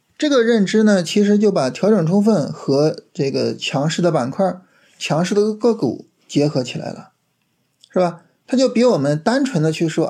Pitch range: 155-215 Hz